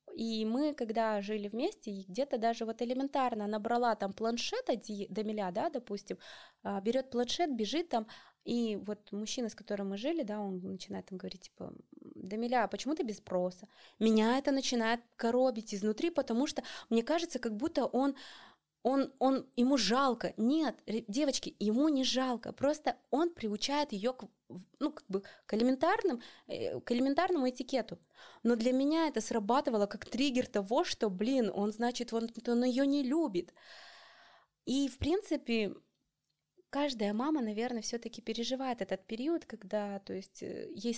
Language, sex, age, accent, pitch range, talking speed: Russian, female, 20-39, native, 205-270 Hz, 145 wpm